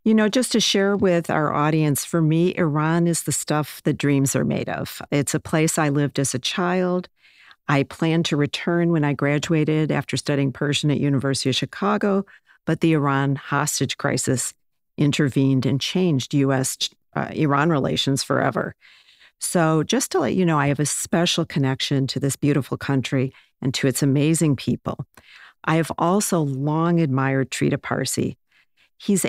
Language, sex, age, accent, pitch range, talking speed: English, female, 50-69, American, 140-170 Hz, 165 wpm